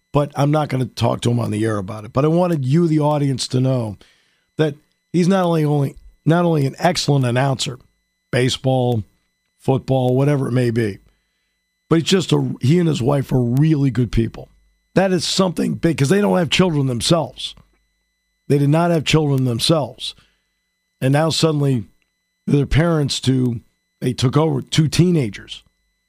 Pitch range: 125-180 Hz